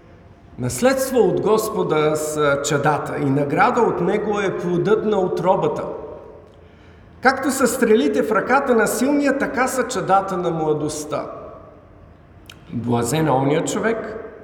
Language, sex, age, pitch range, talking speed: Bulgarian, male, 50-69, 145-230 Hz, 115 wpm